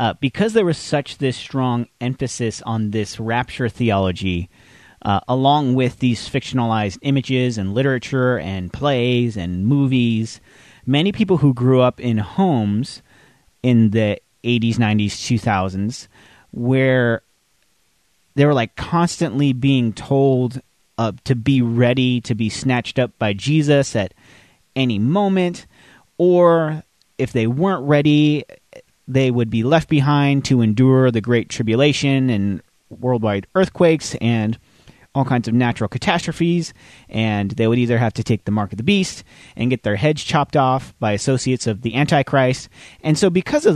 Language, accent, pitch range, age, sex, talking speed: English, American, 115-140 Hz, 30-49, male, 145 wpm